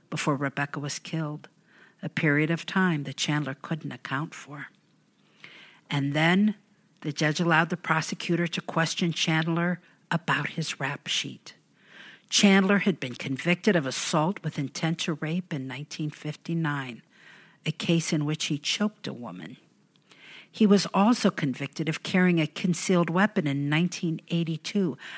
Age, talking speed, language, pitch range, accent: 50-69, 140 wpm, English, 150-190 Hz, American